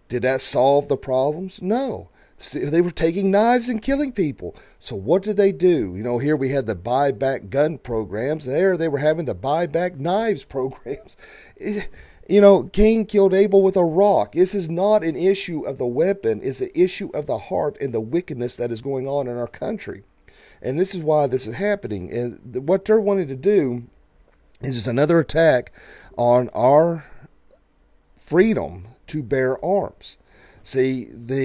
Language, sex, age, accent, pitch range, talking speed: English, male, 40-59, American, 115-175 Hz, 175 wpm